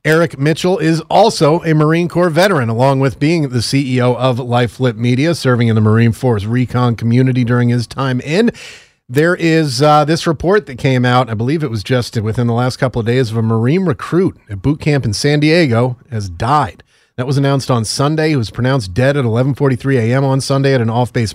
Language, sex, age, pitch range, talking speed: English, male, 30-49, 115-140 Hz, 215 wpm